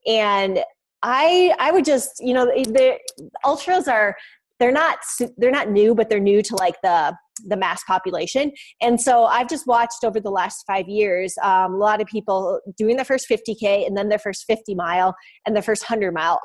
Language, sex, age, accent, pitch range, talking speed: English, female, 20-39, American, 195-270 Hz, 200 wpm